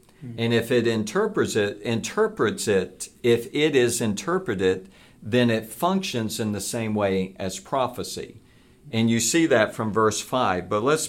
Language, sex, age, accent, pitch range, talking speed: English, male, 50-69, American, 110-130 Hz, 150 wpm